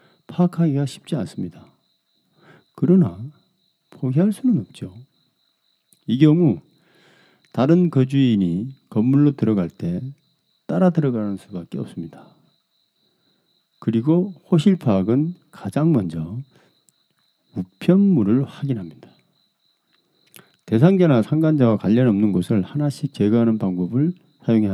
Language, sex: Korean, male